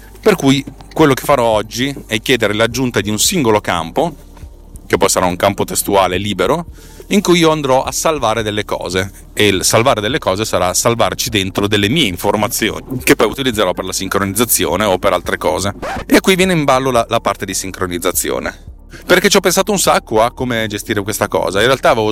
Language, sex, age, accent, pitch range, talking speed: Italian, male, 30-49, native, 95-125 Hz, 200 wpm